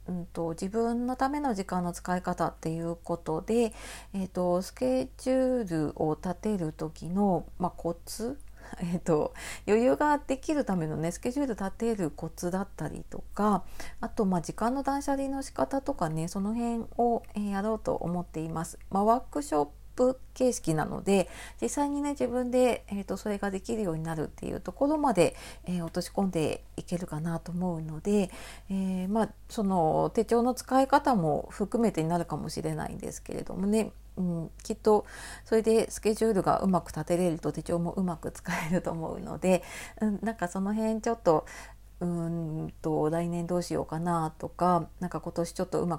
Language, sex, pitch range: Japanese, female, 170-230 Hz